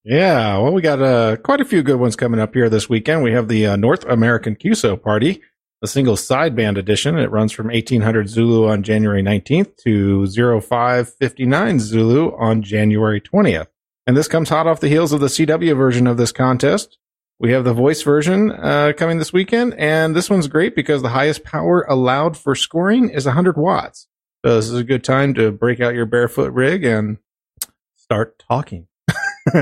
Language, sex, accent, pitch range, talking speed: English, male, American, 110-150 Hz, 190 wpm